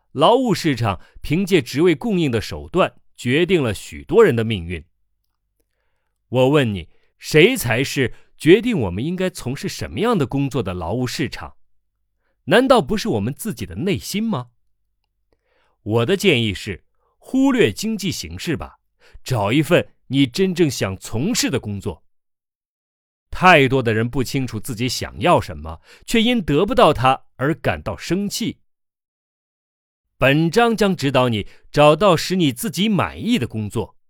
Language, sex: Chinese, male